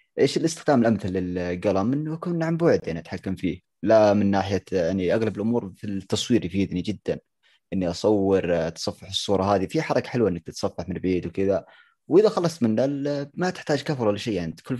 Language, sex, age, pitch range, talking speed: Arabic, male, 20-39, 95-115 Hz, 180 wpm